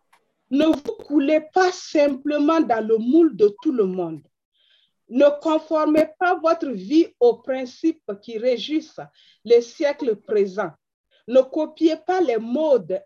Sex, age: female, 40-59